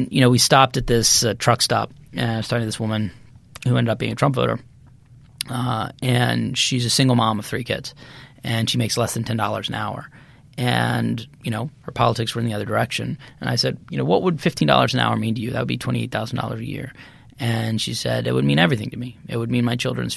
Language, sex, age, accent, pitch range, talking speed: English, male, 20-39, American, 115-135 Hz, 255 wpm